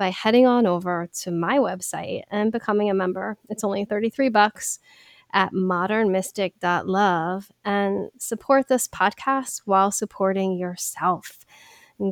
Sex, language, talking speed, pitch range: female, English, 125 wpm, 180-220 Hz